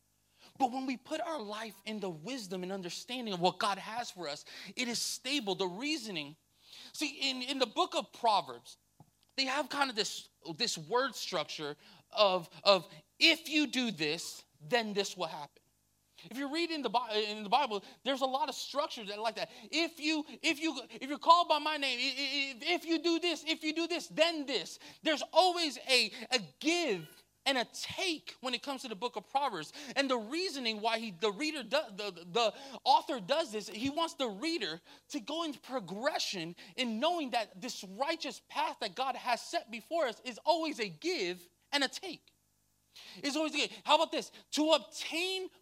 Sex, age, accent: male, 30-49, American